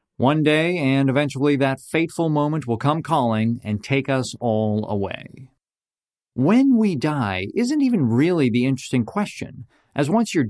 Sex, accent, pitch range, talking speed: male, American, 120-160 Hz, 155 wpm